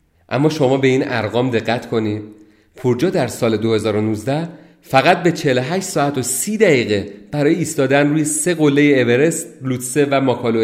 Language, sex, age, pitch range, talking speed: Persian, male, 40-59, 105-130 Hz, 150 wpm